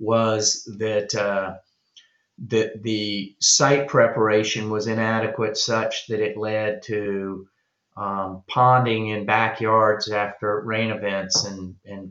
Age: 30-49